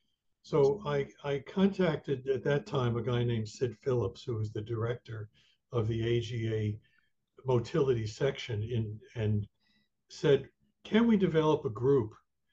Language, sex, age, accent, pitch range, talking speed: English, male, 60-79, American, 115-140 Hz, 135 wpm